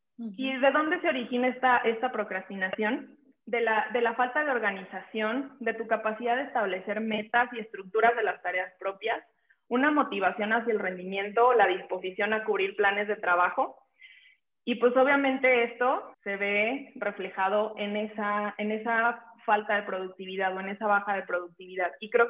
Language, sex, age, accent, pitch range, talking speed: Spanish, female, 20-39, Mexican, 200-240 Hz, 165 wpm